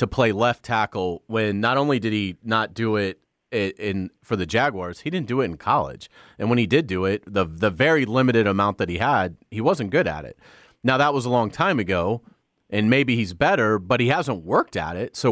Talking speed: 235 wpm